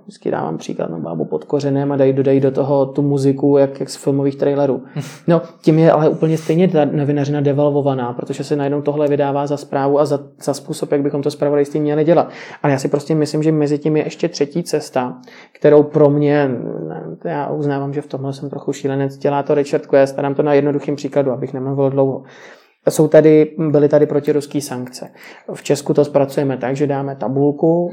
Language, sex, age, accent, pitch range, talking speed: Czech, male, 20-39, native, 135-155 Hz, 205 wpm